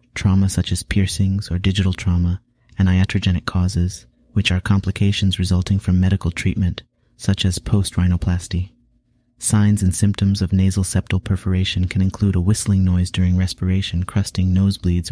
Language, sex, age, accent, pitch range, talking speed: English, male, 30-49, American, 85-95 Hz, 145 wpm